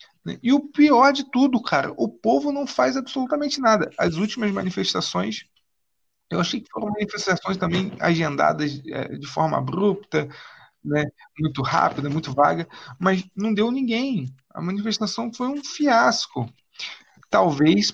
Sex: male